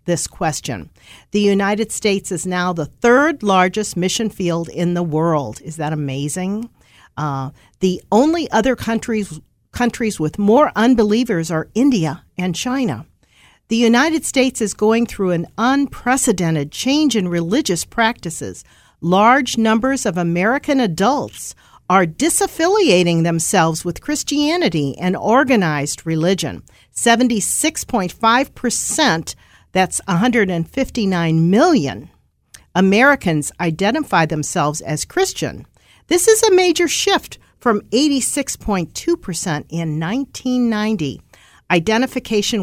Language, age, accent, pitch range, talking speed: English, 50-69, American, 170-245 Hz, 110 wpm